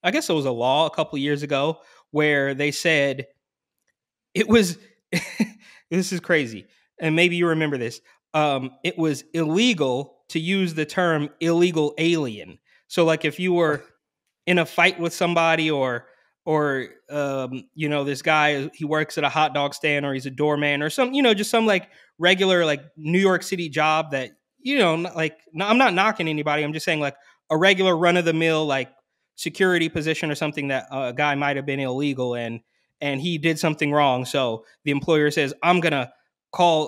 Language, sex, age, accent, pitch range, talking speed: English, male, 20-39, American, 145-175 Hz, 190 wpm